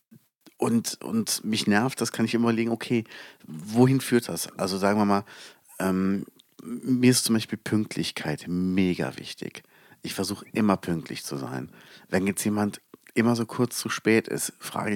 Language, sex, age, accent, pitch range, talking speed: German, male, 50-69, German, 95-115 Hz, 165 wpm